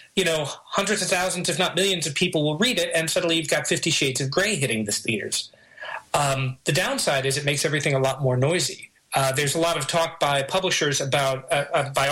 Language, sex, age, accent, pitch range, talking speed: English, male, 30-49, American, 140-170 Hz, 230 wpm